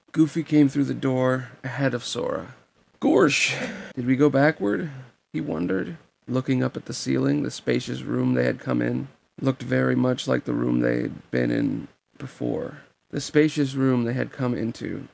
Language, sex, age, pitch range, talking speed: English, male, 30-49, 115-140 Hz, 180 wpm